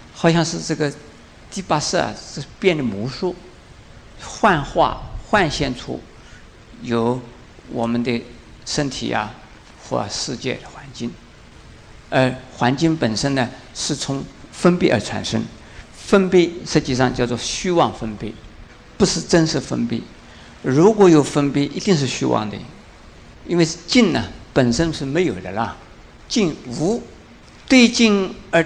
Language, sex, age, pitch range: Chinese, male, 50-69, 120-175 Hz